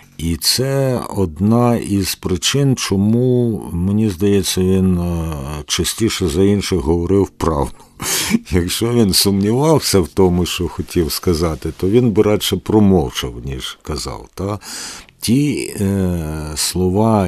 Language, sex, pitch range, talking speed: English, male, 80-100 Hz, 110 wpm